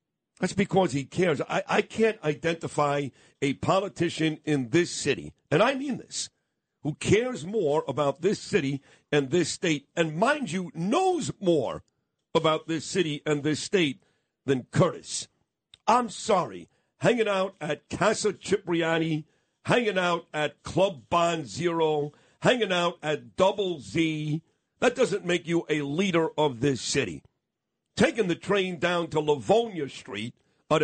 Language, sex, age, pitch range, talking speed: English, male, 50-69, 150-185 Hz, 145 wpm